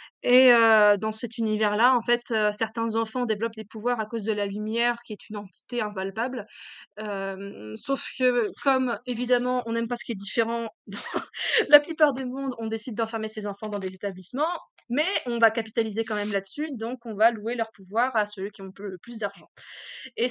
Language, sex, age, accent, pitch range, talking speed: French, female, 20-39, French, 210-245 Hz, 200 wpm